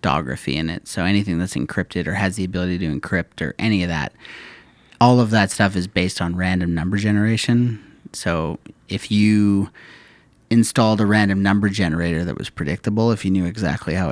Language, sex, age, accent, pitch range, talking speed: English, male, 30-49, American, 90-110 Hz, 185 wpm